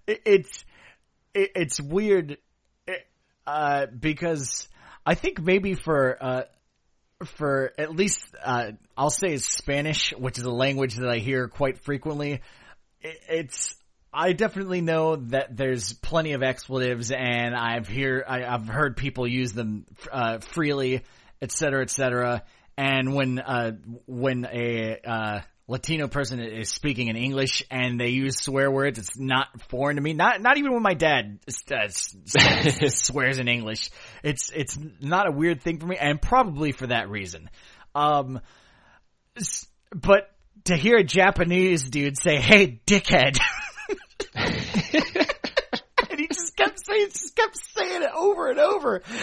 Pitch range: 125-185 Hz